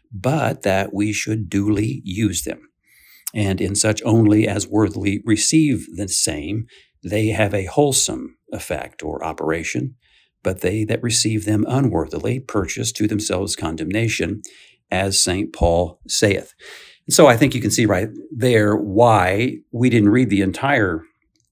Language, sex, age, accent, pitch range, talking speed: English, male, 50-69, American, 100-120 Hz, 140 wpm